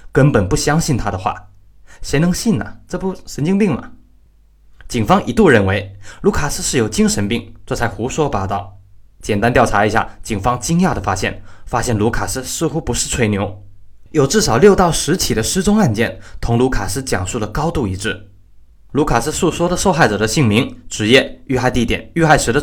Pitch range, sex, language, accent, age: 100-140 Hz, male, Chinese, native, 20-39